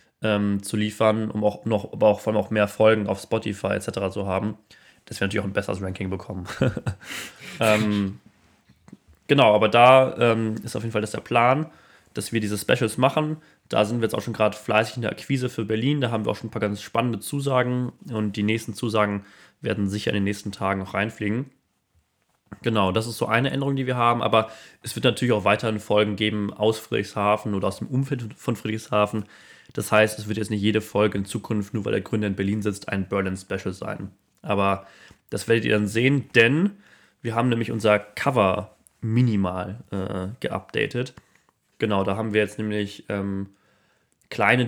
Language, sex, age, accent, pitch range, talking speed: German, male, 20-39, German, 100-115 Hz, 195 wpm